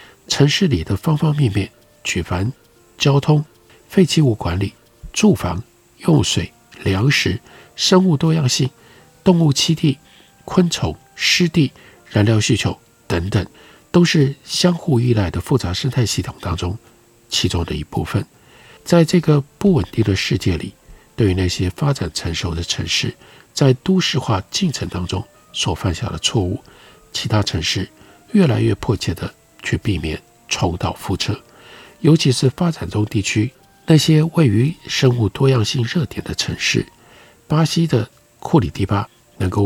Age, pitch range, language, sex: 50-69, 95-150 Hz, Chinese, male